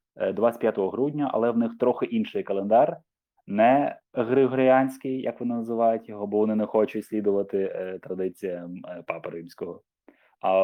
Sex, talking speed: male, 130 wpm